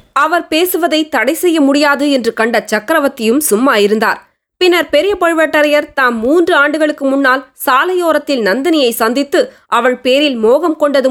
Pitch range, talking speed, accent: 240-310 Hz, 130 wpm, native